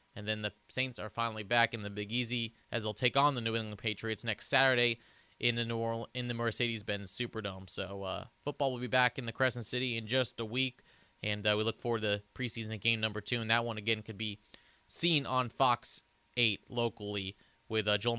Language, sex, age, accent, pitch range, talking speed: English, male, 20-39, American, 110-130 Hz, 220 wpm